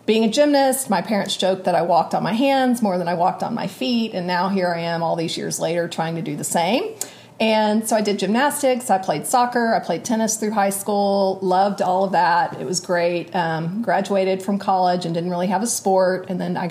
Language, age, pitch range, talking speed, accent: English, 30-49, 180-215 Hz, 240 wpm, American